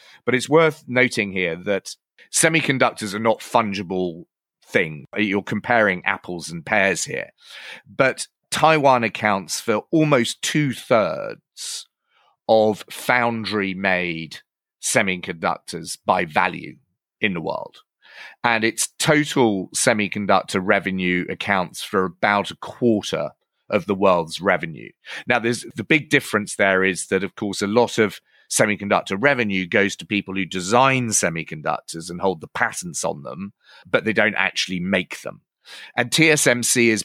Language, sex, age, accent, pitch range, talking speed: English, male, 30-49, British, 95-120 Hz, 135 wpm